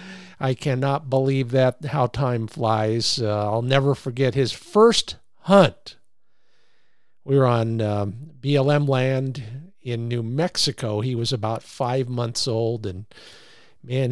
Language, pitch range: English, 125-165 Hz